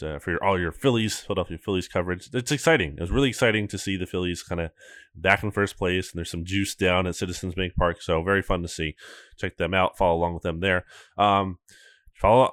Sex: male